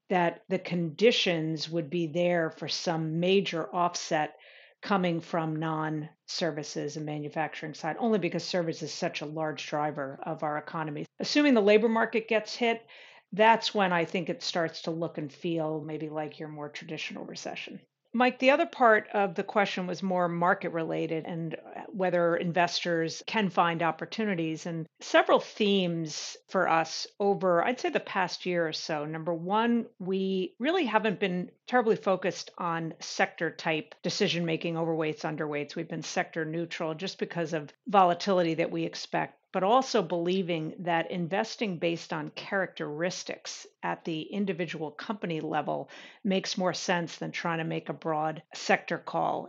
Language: English